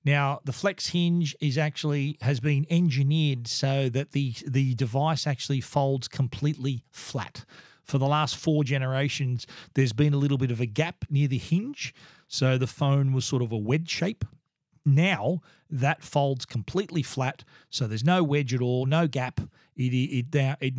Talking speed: 170 wpm